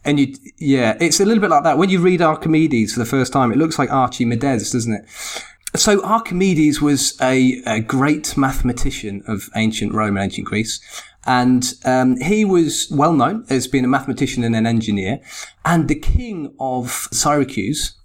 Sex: male